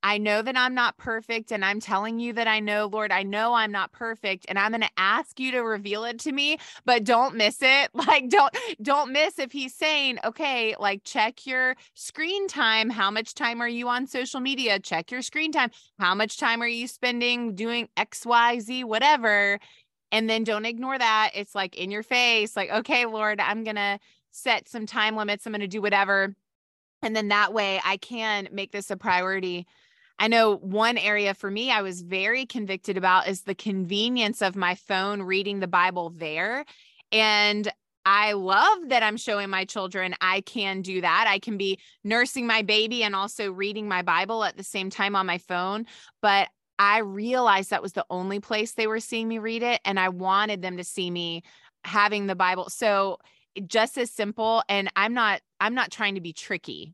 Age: 20-39